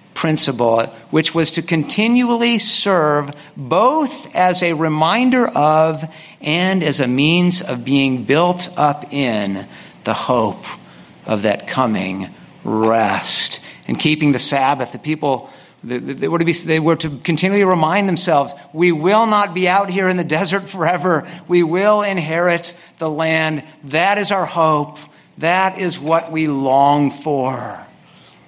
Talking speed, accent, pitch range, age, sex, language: 140 wpm, American, 135-165 Hz, 50-69, male, English